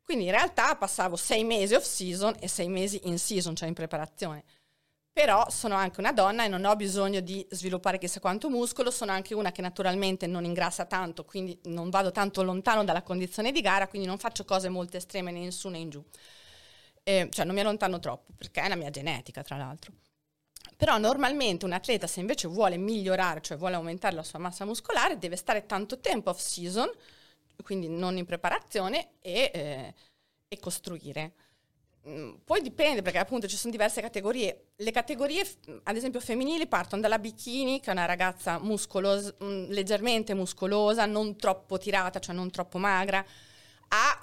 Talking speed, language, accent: 175 wpm, Italian, native